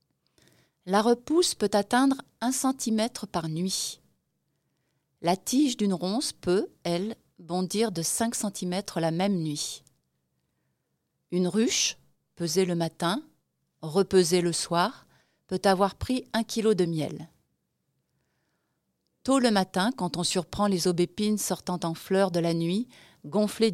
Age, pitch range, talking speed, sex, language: 30-49, 170-210 Hz, 130 wpm, female, French